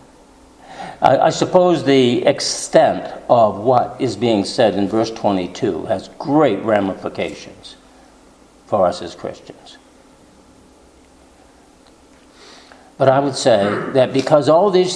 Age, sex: 60-79, male